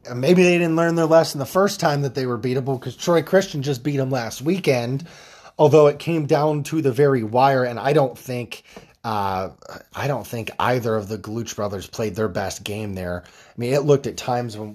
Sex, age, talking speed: male, 30-49, 220 wpm